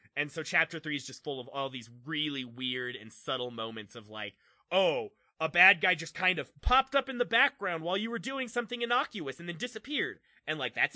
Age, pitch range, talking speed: 20-39, 125-165 Hz, 225 wpm